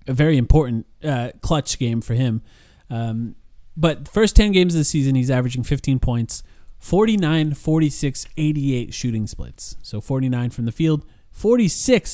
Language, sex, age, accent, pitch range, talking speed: English, male, 20-39, American, 120-160 Hz, 155 wpm